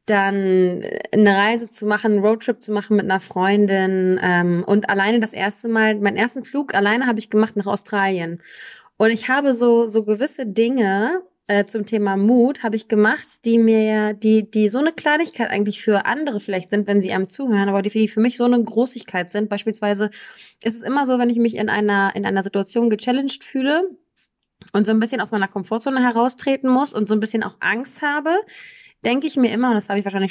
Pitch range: 200-245 Hz